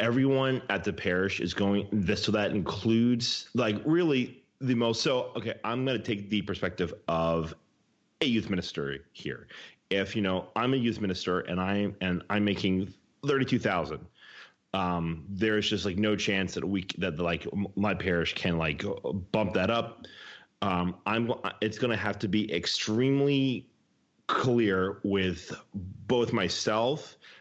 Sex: male